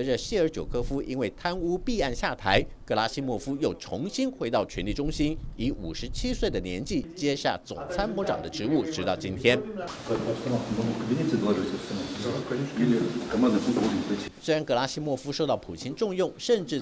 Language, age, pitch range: Chinese, 50-69, 120-180 Hz